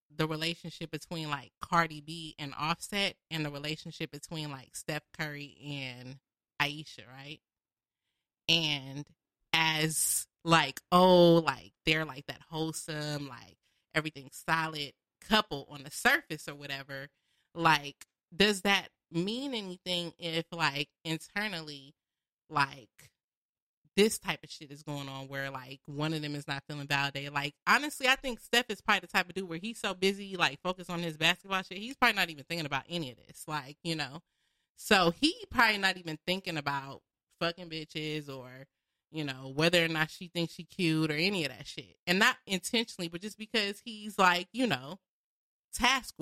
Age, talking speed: 30-49, 165 wpm